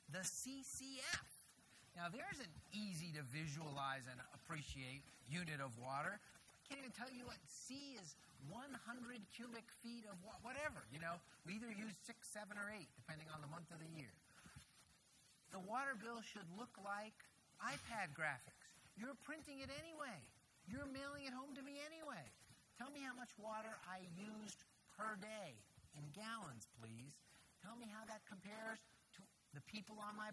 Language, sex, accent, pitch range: English, male, American, 155-235 Hz